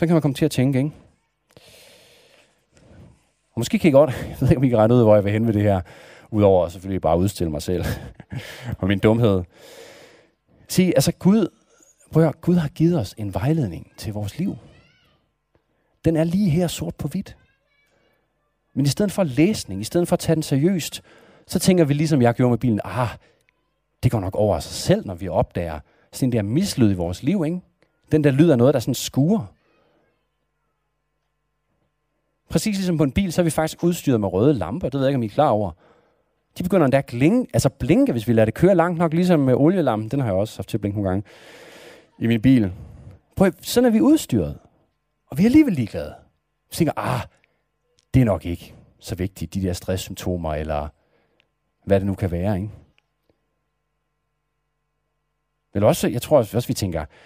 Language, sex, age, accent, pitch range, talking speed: Danish, male, 40-59, native, 100-160 Hz, 195 wpm